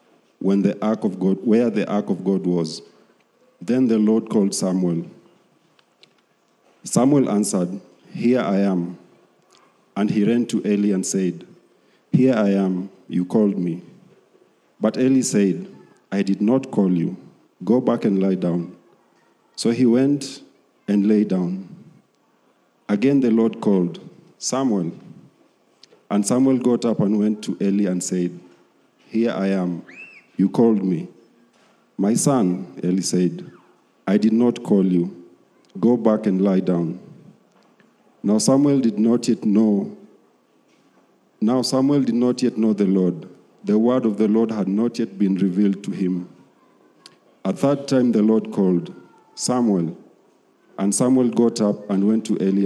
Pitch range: 95-115 Hz